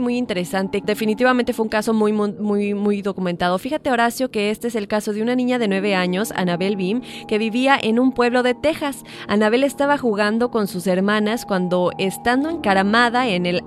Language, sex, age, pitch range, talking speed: Spanish, female, 20-39, 200-255 Hz, 190 wpm